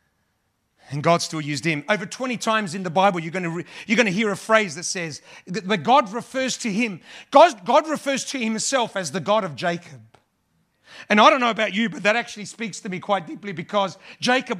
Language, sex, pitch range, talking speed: English, male, 155-225 Hz, 225 wpm